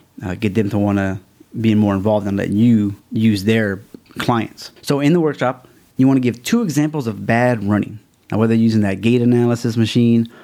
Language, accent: English, American